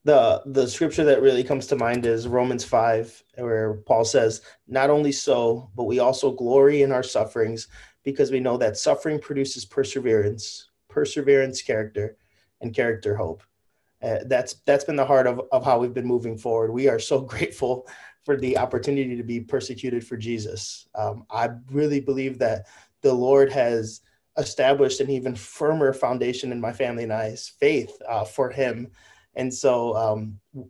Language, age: English, 20-39